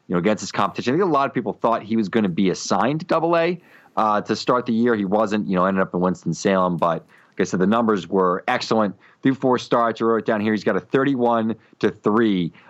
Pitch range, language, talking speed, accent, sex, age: 90-120 Hz, English, 260 wpm, American, male, 30-49